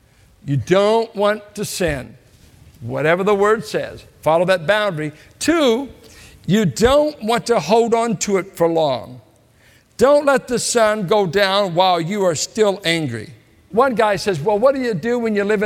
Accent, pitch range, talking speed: American, 145-215 Hz, 175 wpm